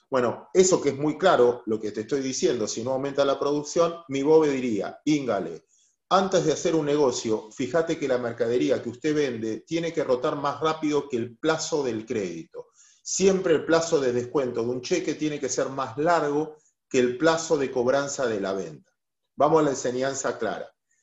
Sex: male